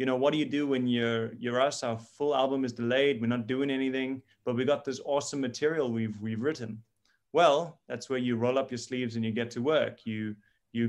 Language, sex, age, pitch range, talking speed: English, male, 30-49, 115-135 Hz, 235 wpm